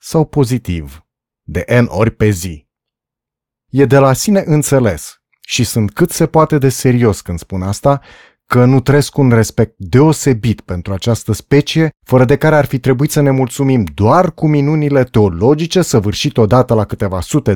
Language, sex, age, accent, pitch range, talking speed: Romanian, male, 30-49, native, 105-150 Hz, 165 wpm